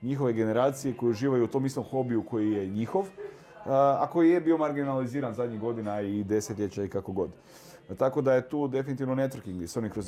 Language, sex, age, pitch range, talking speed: Croatian, male, 30-49, 110-135 Hz, 190 wpm